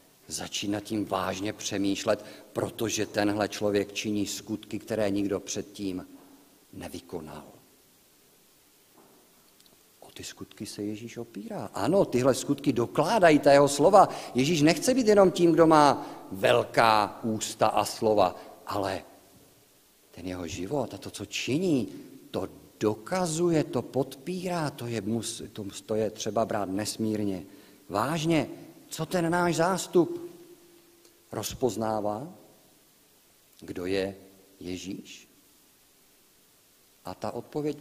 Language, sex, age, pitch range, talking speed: Czech, male, 50-69, 105-160 Hz, 110 wpm